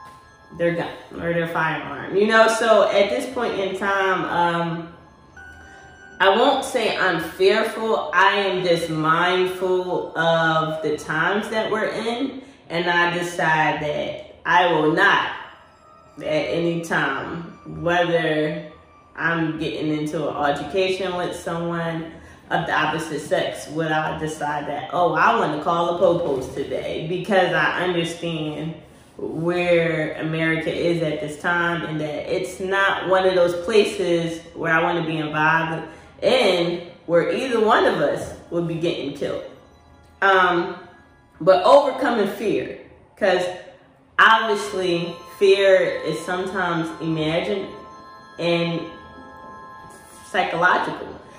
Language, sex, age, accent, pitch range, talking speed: English, female, 20-39, American, 160-195 Hz, 125 wpm